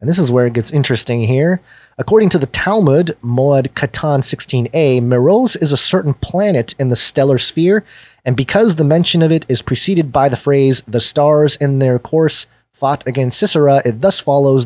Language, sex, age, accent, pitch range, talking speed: English, male, 30-49, American, 125-160 Hz, 190 wpm